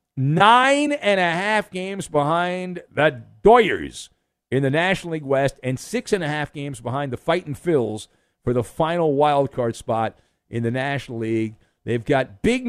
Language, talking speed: English, 135 wpm